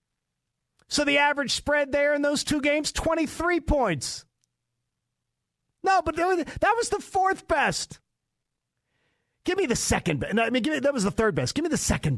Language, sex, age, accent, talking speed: English, male, 40-59, American, 160 wpm